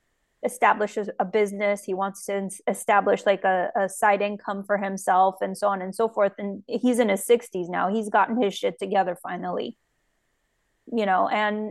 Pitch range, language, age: 200-235 Hz, English, 20-39